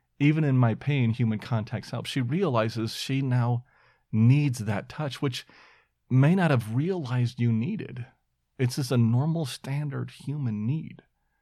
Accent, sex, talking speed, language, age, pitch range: American, male, 145 wpm, English, 40-59, 105-135 Hz